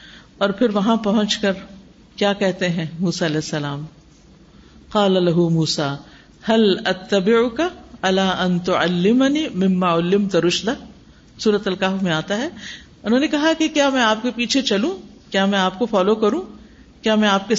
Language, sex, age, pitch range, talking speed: Urdu, female, 50-69, 200-300 Hz, 115 wpm